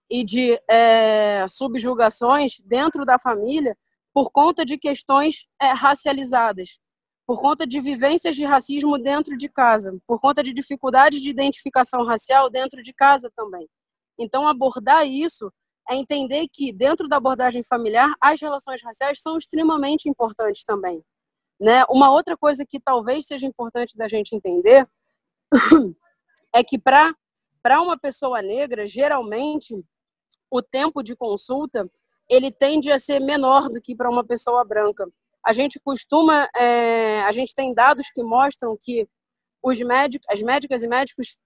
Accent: Brazilian